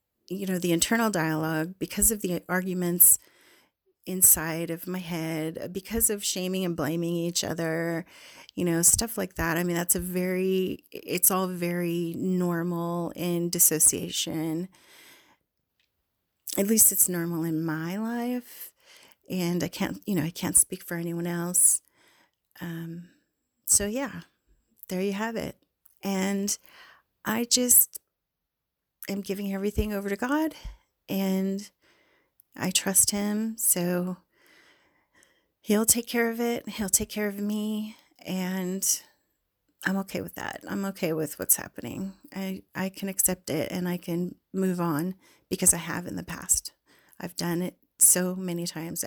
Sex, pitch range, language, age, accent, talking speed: female, 170-200 Hz, English, 30-49, American, 145 wpm